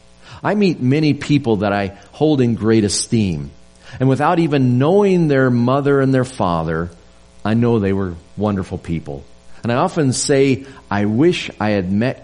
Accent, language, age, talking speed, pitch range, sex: American, English, 50-69, 165 wpm, 90-130 Hz, male